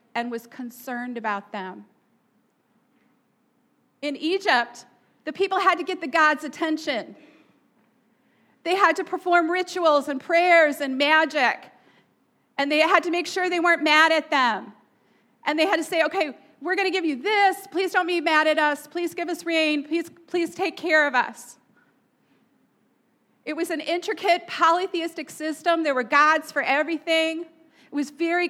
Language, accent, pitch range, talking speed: English, American, 260-345 Hz, 160 wpm